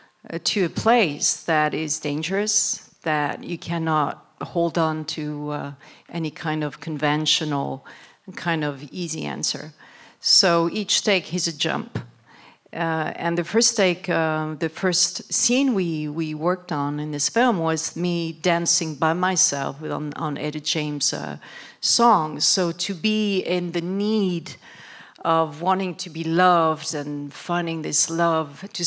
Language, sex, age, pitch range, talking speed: English, female, 50-69, 155-190 Hz, 145 wpm